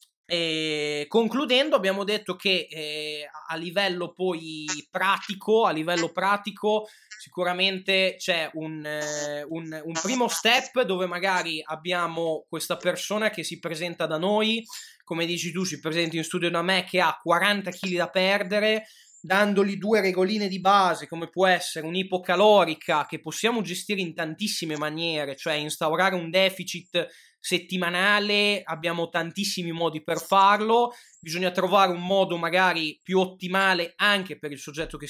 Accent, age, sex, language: native, 20-39, male, Italian